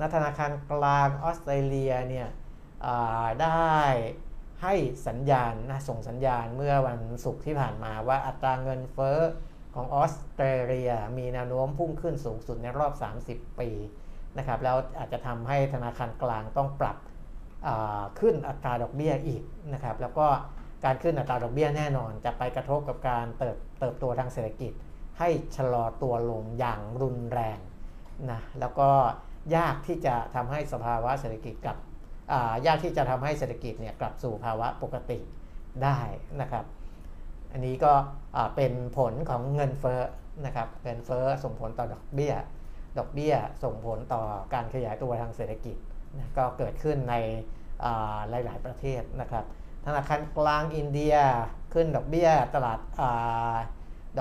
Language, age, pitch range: Thai, 60-79, 115-140 Hz